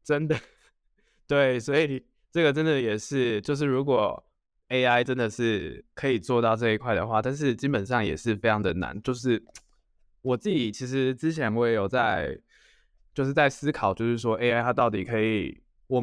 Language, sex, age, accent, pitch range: Chinese, male, 20-39, native, 110-130 Hz